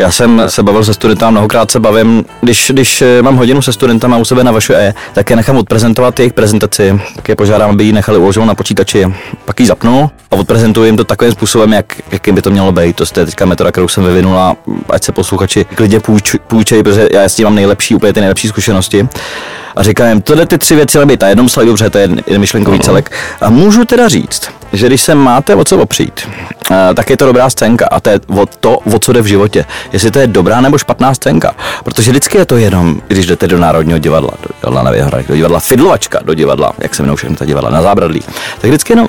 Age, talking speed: 20-39, 230 wpm